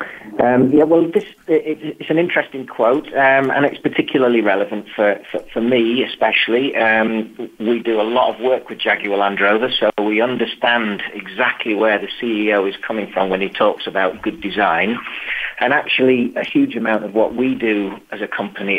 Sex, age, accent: male, 40-59, British